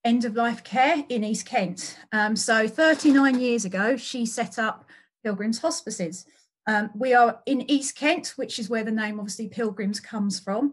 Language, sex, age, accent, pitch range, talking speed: English, female, 30-49, British, 210-255 Hz, 170 wpm